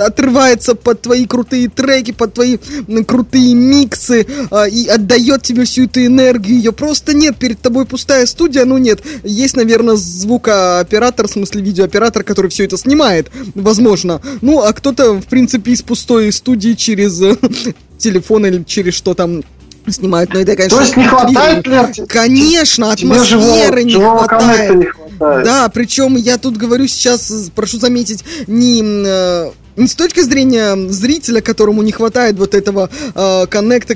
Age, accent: 20-39, native